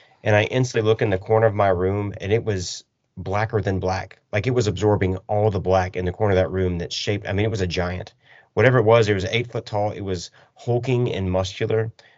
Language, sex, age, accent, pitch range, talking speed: English, male, 30-49, American, 95-125 Hz, 245 wpm